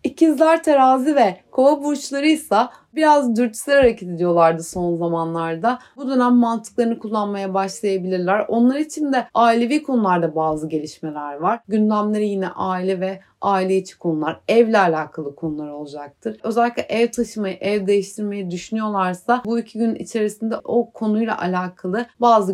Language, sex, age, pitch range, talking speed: Turkish, female, 30-49, 180-235 Hz, 130 wpm